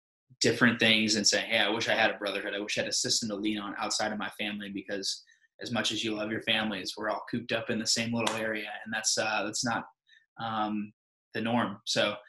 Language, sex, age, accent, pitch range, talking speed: English, male, 20-39, American, 105-115 Hz, 245 wpm